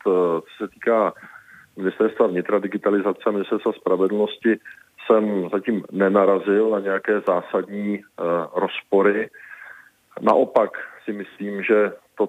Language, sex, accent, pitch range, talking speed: Czech, male, native, 95-105 Hz, 105 wpm